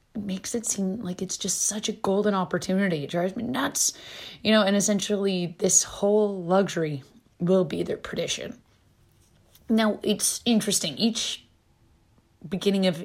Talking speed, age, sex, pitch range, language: 145 wpm, 20-39, female, 170-205 Hz, English